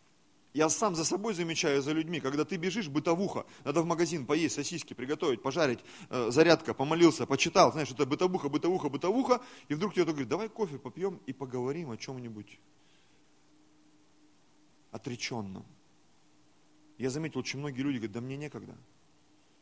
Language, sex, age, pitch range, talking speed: Russian, male, 30-49, 125-155 Hz, 145 wpm